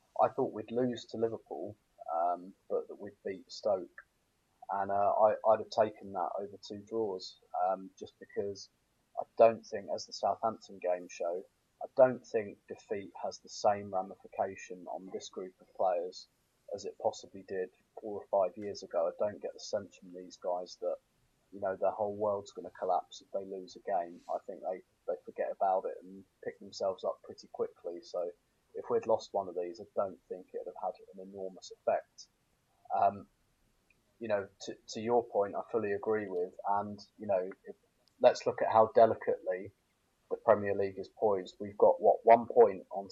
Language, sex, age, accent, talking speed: English, male, 30-49, British, 190 wpm